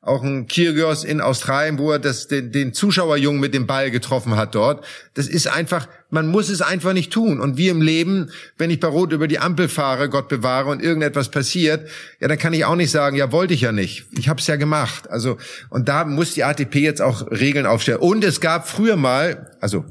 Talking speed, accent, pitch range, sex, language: 225 wpm, German, 130-160 Hz, male, German